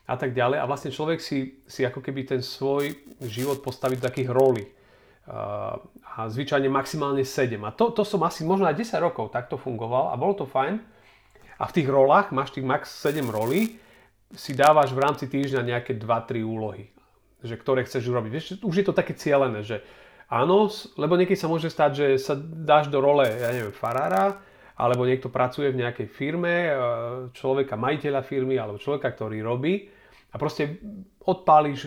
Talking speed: 175 wpm